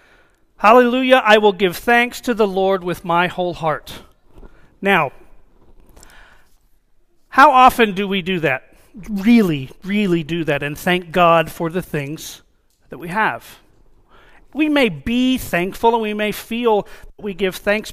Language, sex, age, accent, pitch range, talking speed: English, male, 40-59, American, 195-275 Hz, 145 wpm